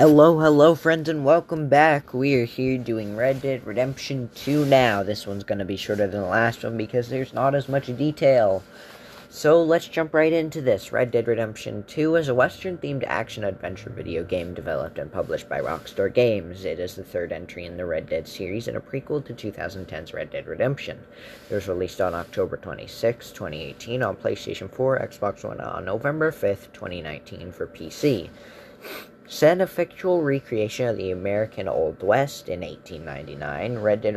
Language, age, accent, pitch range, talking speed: English, 10-29, American, 105-140 Hz, 175 wpm